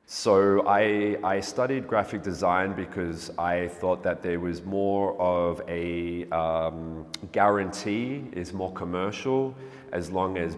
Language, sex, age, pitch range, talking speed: English, male, 30-49, 85-105 Hz, 130 wpm